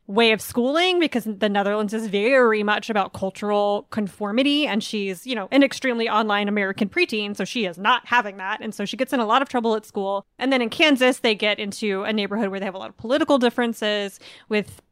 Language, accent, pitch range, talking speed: English, American, 205-250 Hz, 225 wpm